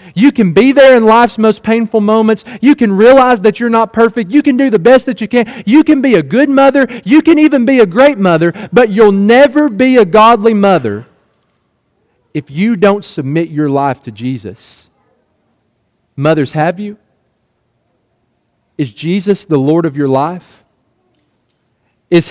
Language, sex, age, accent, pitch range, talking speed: English, male, 40-59, American, 140-225 Hz, 170 wpm